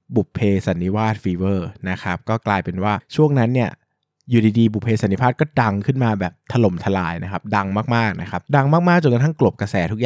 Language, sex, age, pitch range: Thai, male, 20-39, 100-125 Hz